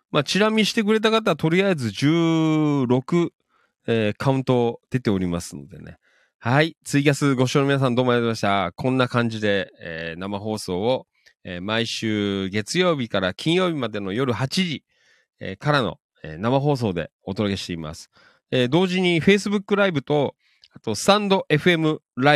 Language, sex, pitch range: Japanese, male, 95-145 Hz